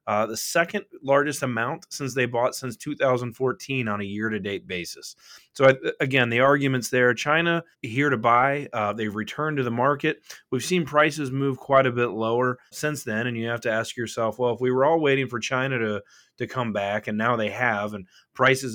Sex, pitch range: male, 115-135 Hz